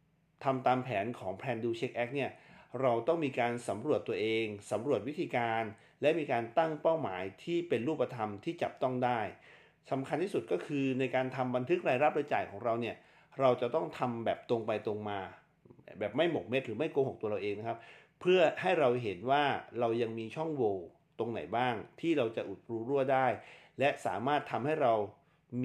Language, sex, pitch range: Thai, male, 115-150 Hz